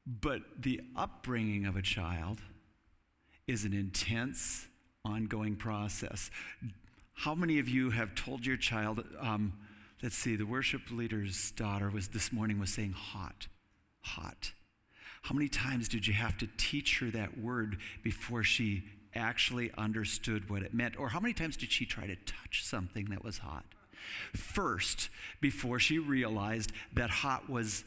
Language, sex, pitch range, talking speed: English, male, 100-125 Hz, 155 wpm